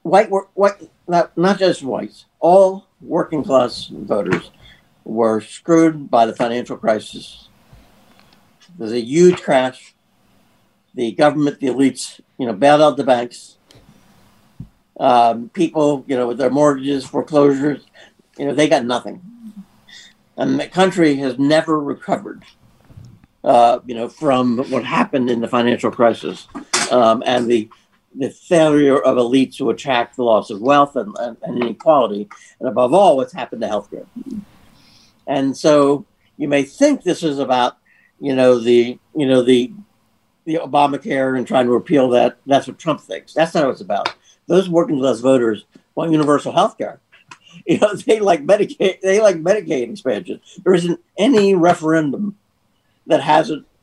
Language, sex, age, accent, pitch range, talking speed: English, male, 60-79, American, 120-165 Hz, 150 wpm